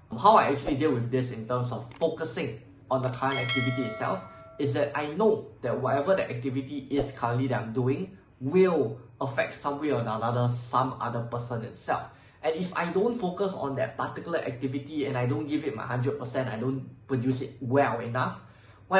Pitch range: 120-145 Hz